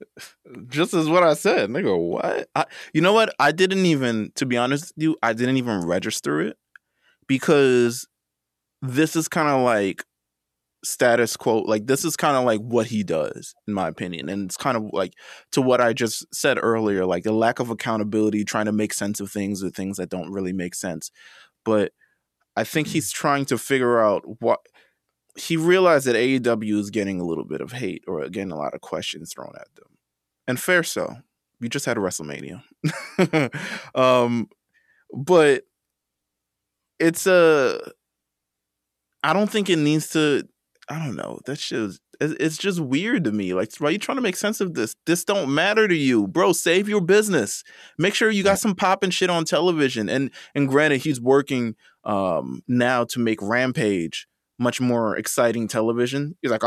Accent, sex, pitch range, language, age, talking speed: American, male, 105-160 Hz, English, 20-39, 180 wpm